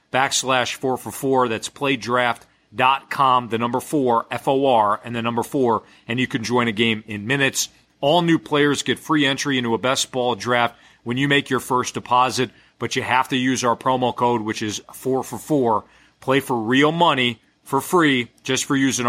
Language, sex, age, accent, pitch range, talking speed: English, male, 40-59, American, 115-140 Hz, 180 wpm